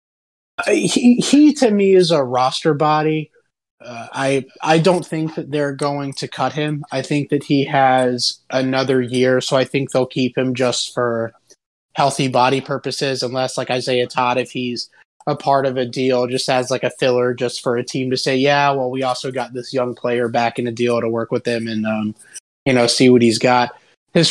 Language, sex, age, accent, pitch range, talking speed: English, male, 20-39, American, 125-150 Hz, 210 wpm